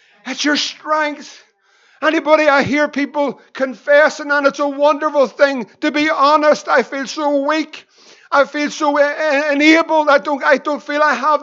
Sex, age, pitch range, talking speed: male, 50-69, 265-320 Hz, 160 wpm